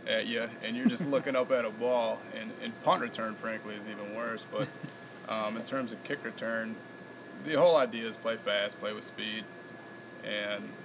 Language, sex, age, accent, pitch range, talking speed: English, male, 20-39, American, 110-135 Hz, 195 wpm